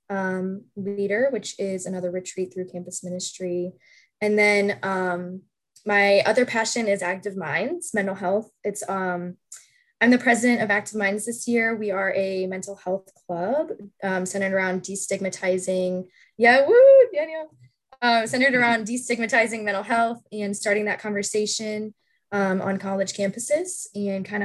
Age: 10-29